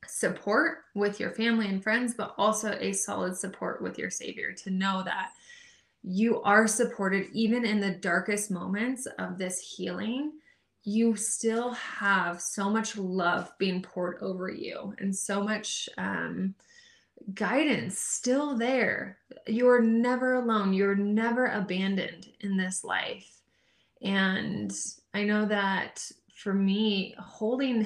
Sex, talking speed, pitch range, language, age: female, 130 wpm, 195-235 Hz, English, 20-39